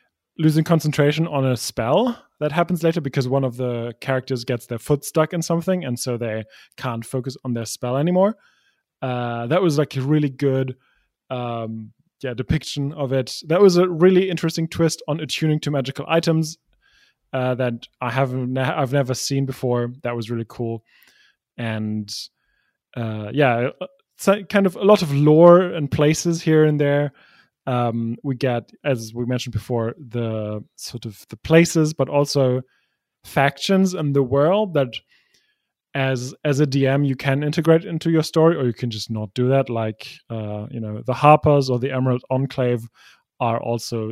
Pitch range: 120-155 Hz